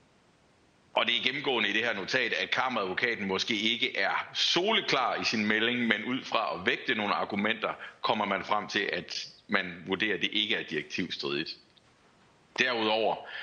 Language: Danish